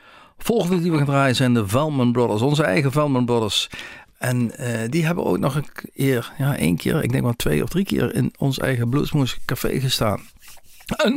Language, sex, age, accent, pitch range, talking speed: Dutch, male, 50-69, Dutch, 105-140 Hz, 200 wpm